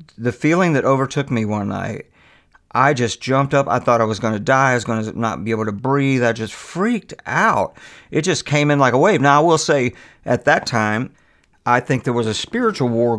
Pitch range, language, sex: 115-150 Hz, English, male